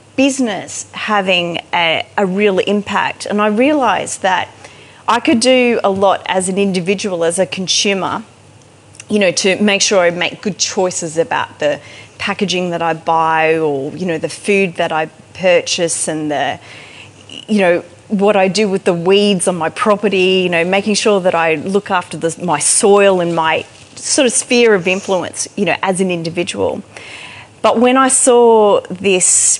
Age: 30-49